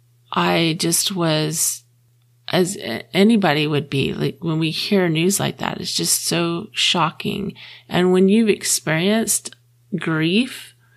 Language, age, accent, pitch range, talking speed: English, 30-49, American, 155-200 Hz, 125 wpm